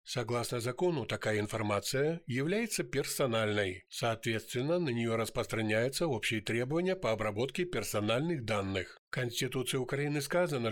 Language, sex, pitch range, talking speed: Ukrainian, male, 110-140 Hz, 110 wpm